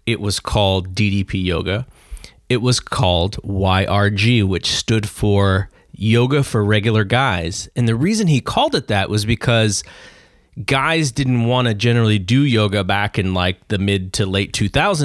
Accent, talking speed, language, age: American, 160 wpm, English, 30-49